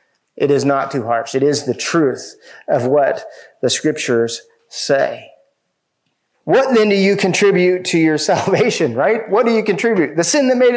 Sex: male